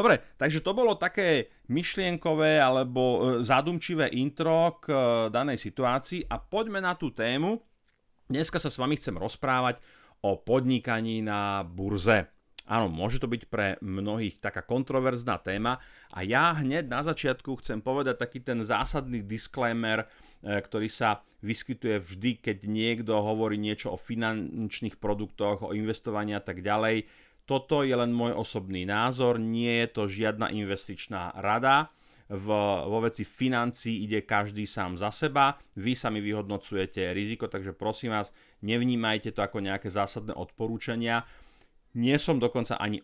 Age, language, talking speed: 40-59, Slovak, 140 wpm